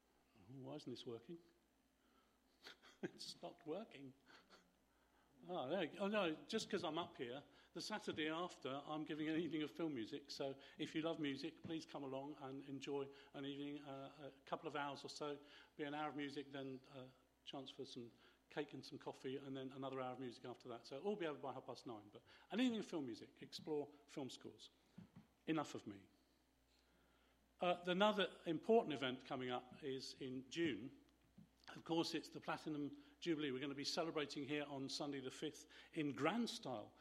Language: English